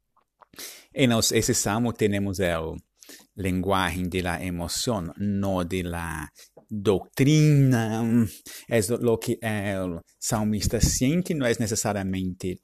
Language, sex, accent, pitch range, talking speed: Spanish, male, Italian, 95-115 Hz, 105 wpm